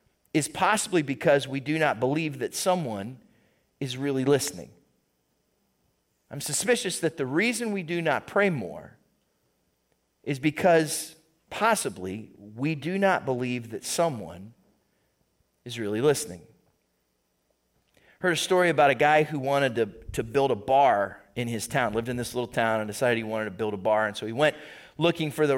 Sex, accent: male, American